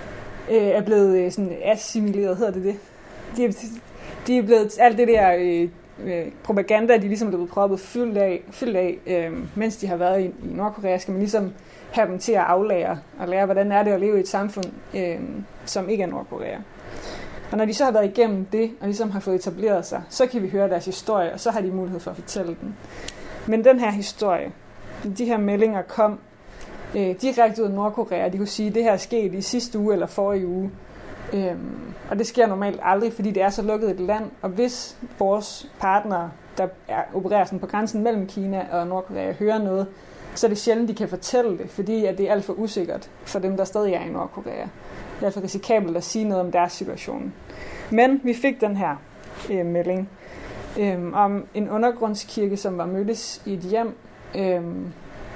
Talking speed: 195 wpm